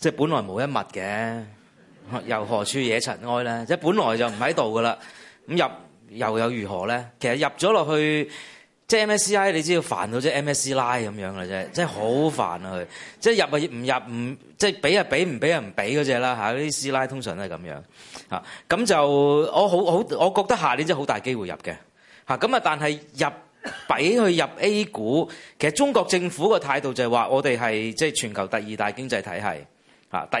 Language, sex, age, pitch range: Chinese, male, 30-49, 120-170 Hz